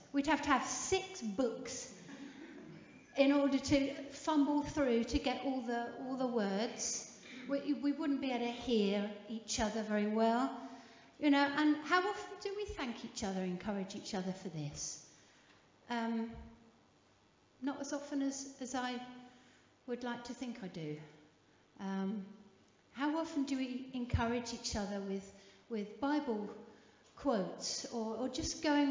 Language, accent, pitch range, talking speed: English, British, 195-265 Hz, 150 wpm